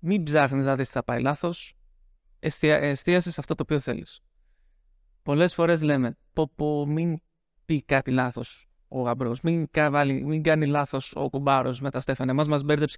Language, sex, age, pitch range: English, male, 20-39, 140-175 Hz